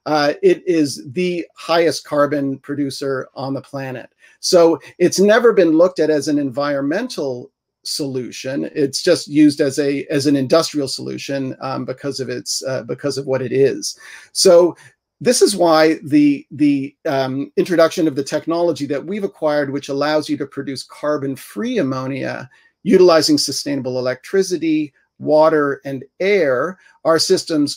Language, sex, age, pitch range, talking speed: English, male, 40-59, 140-165 Hz, 145 wpm